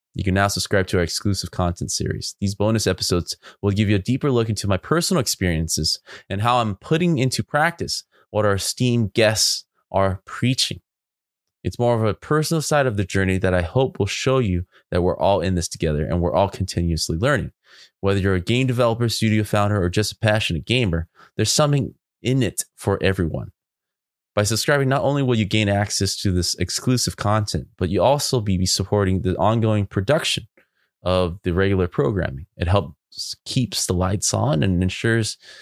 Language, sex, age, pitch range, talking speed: English, male, 20-39, 90-120 Hz, 185 wpm